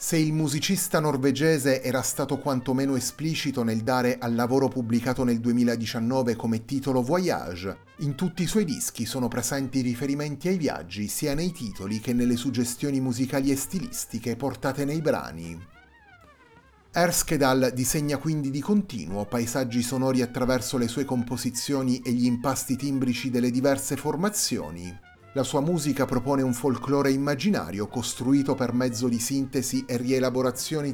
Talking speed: 140 wpm